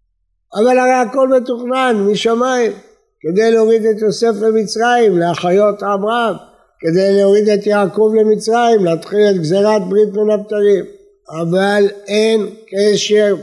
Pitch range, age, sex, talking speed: 190-215 Hz, 60-79, male, 115 wpm